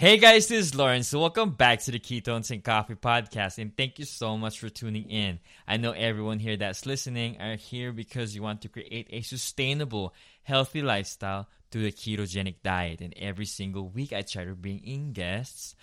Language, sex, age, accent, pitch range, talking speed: English, male, 20-39, Filipino, 95-120 Hz, 200 wpm